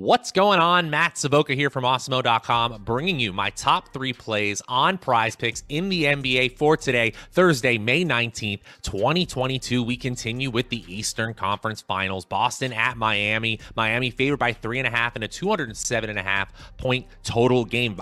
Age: 30-49